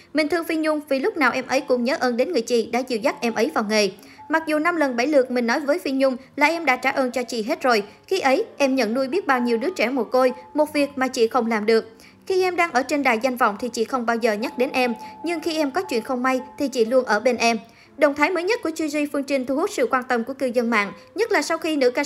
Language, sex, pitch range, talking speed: Vietnamese, male, 235-295 Hz, 310 wpm